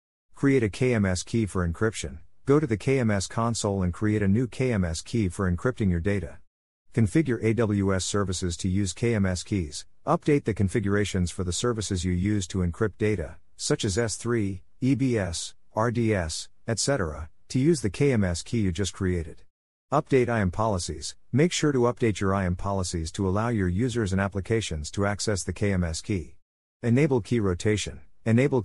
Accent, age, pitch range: American, 50-69, 90-115 Hz